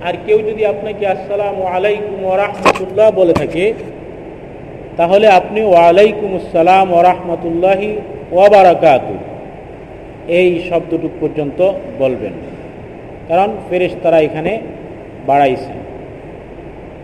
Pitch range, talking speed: 165-205 Hz, 90 wpm